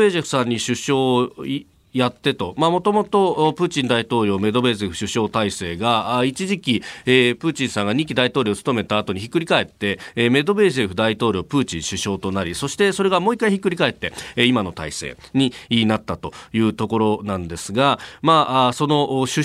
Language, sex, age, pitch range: Japanese, male, 40-59, 110-170 Hz